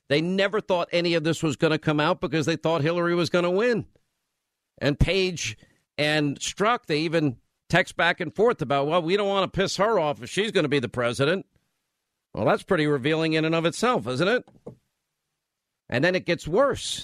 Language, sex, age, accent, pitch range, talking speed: English, male, 50-69, American, 135-165 Hz, 210 wpm